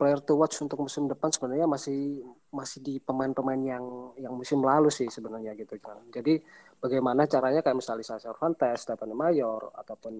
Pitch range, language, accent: 120-140 Hz, Indonesian, native